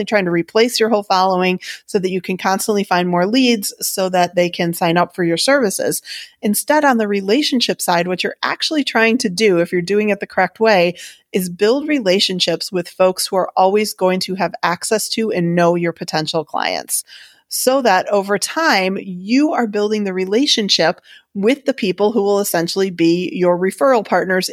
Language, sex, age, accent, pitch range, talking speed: English, female, 30-49, American, 180-225 Hz, 190 wpm